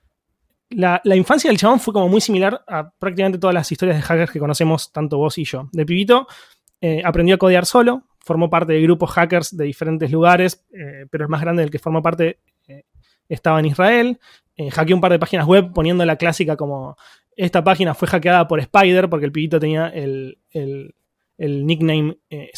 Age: 20-39